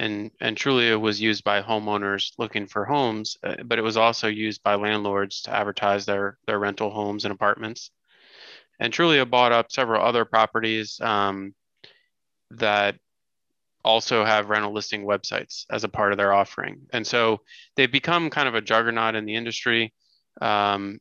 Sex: male